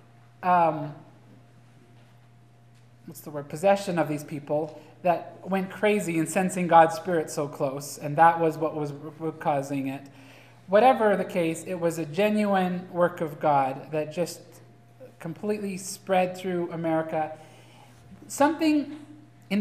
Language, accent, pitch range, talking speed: English, American, 155-205 Hz, 130 wpm